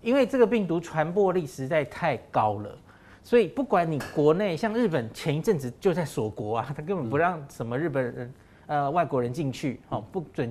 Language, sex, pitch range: Chinese, male, 130-185 Hz